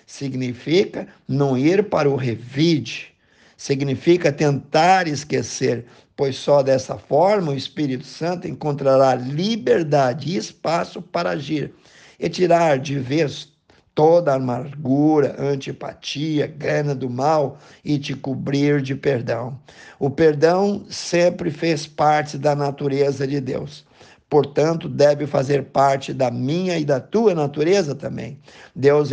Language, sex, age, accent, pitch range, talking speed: Portuguese, male, 50-69, Brazilian, 135-160 Hz, 120 wpm